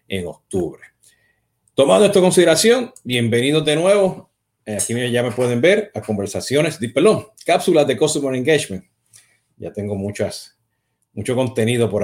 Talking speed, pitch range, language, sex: 145 wpm, 115-155 Hz, Spanish, male